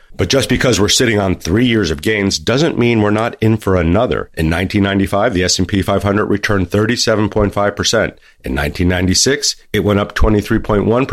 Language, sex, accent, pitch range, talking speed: English, male, American, 90-110 Hz, 140 wpm